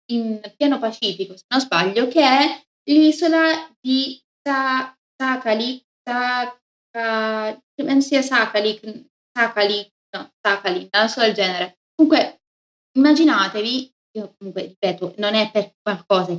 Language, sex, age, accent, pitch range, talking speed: Italian, female, 20-39, native, 195-250 Hz, 115 wpm